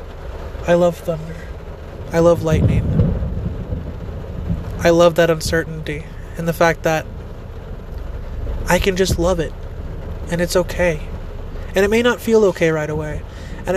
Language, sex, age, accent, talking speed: English, male, 20-39, American, 135 wpm